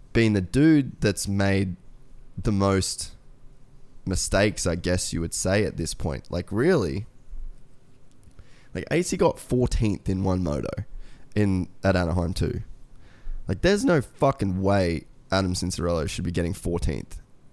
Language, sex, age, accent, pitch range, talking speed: English, male, 10-29, Australian, 90-115 Hz, 135 wpm